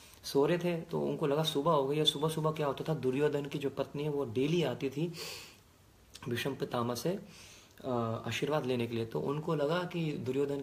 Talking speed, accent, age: 205 wpm, native, 30-49